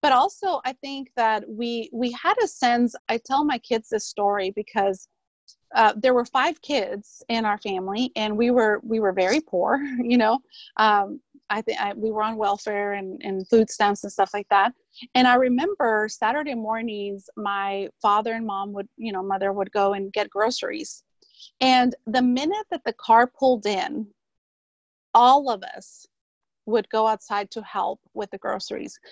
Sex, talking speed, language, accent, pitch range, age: female, 175 wpm, English, American, 205-260 Hz, 30-49